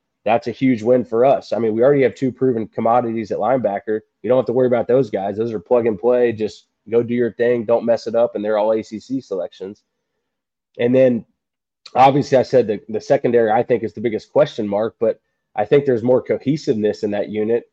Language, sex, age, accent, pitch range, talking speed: English, male, 20-39, American, 110-130 Hz, 225 wpm